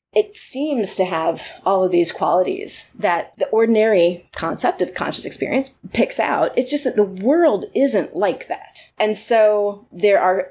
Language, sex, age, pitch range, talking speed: English, female, 30-49, 185-275 Hz, 165 wpm